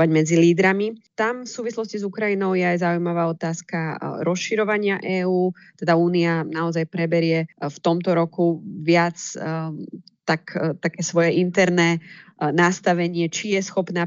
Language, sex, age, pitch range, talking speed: Slovak, female, 20-39, 165-185 Hz, 130 wpm